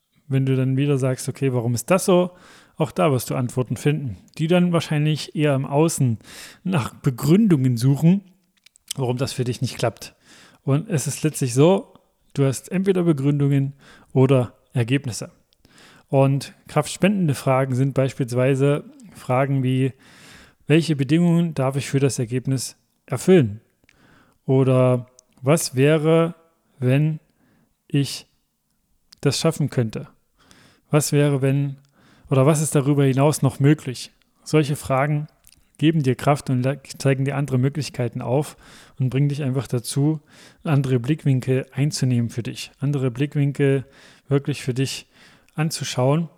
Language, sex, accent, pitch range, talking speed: German, male, German, 130-155 Hz, 130 wpm